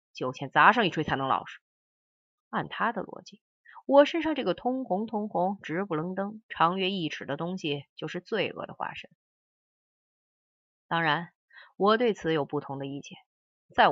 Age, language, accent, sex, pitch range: 30-49, Chinese, native, female, 150-210 Hz